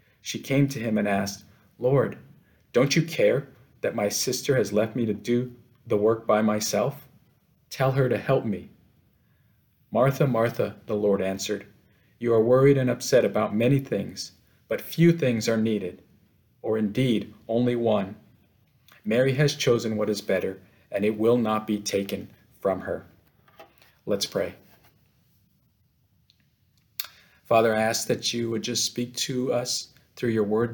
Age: 50-69